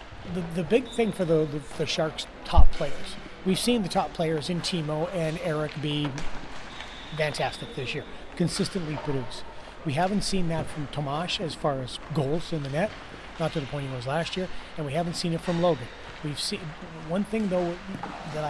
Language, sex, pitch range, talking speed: English, male, 150-175 Hz, 195 wpm